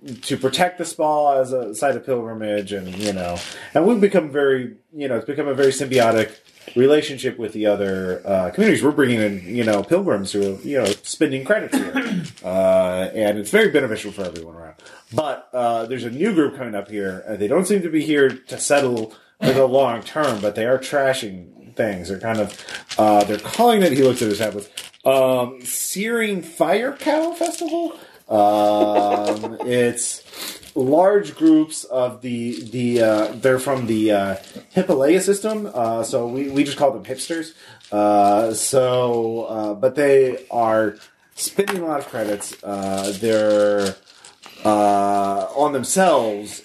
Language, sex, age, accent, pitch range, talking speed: English, male, 30-49, American, 105-145 Hz, 170 wpm